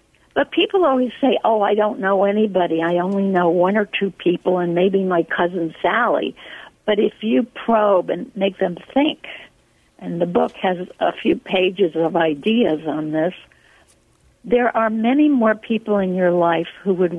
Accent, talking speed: American, 175 wpm